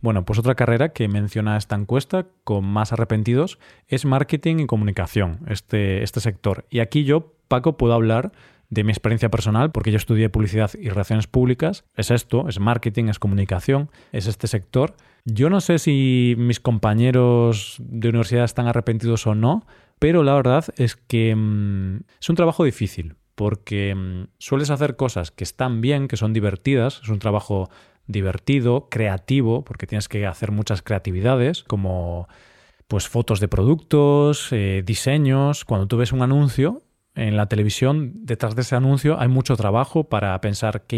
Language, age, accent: Spanish, 20-39, Spanish